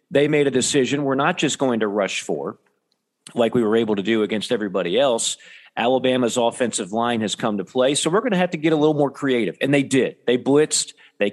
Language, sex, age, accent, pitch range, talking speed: English, male, 40-59, American, 125-165 Hz, 235 wpm